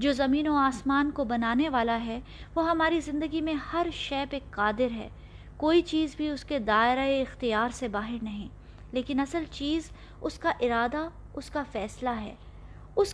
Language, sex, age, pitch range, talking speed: Urdu, female, 20-39, 235-305 Hz, 175 wpm